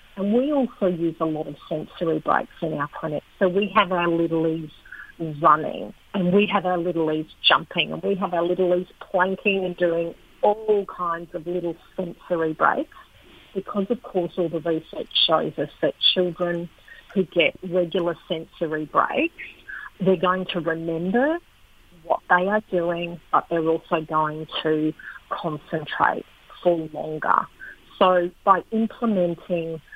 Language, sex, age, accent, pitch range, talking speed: English, female, 40-59, Australian, 165-190 Hz, 145 wpm